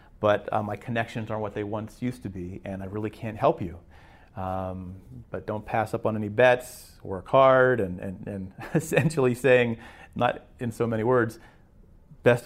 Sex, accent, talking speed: male, American, 185 wpm